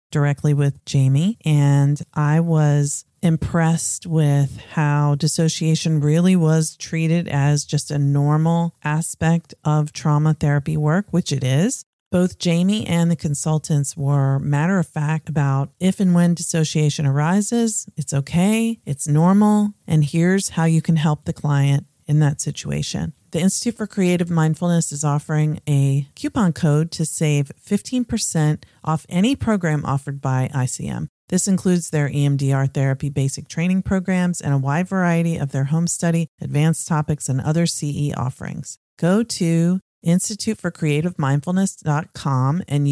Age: 40-59